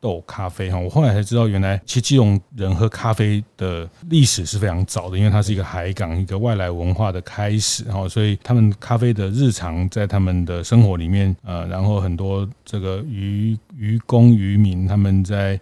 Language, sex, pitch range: Chinese, male, 95-115 Hz